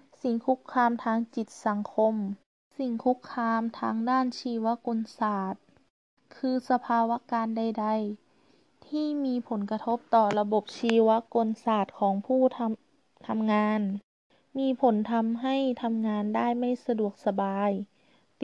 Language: Thai